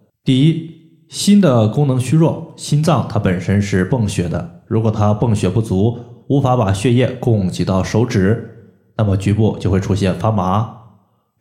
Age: 20-39